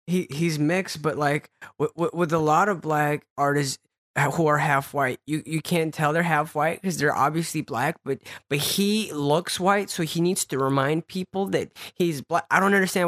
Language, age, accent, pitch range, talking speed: English, 20-39, American, 140-175 Hz, 205 wpm